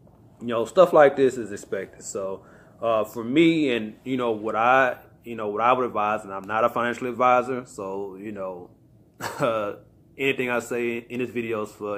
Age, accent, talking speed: 30-49, American, 200 wpm